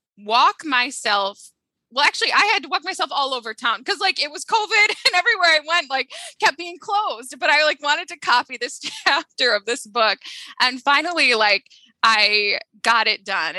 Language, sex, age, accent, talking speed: English, female, 10-29, American, 190 wpm